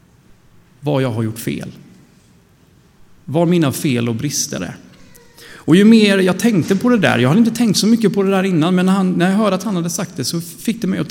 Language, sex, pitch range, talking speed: Swedish, male, 125-185 Hz, 230 wpm